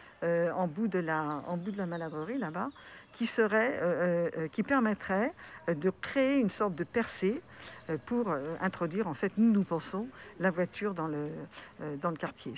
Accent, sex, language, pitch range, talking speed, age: French, female, French, 160-205 Hz, 180 wpm, 50-69